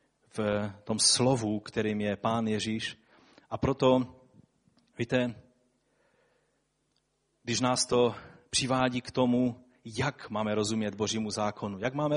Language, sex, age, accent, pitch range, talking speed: Czech, male, 30-49, native, 105-130 Hz, 115 wpm